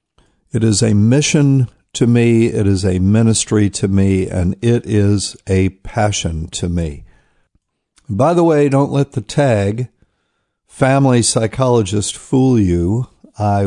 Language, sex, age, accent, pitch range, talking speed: English, male, 50-69, American, 95-120 Hz, 135 wpm